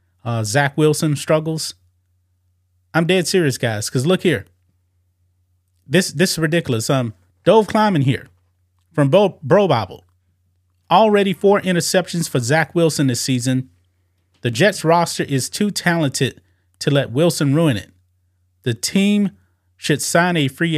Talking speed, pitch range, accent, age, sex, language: 135 wpm, 90-145 Hz, American, 30-49, male, English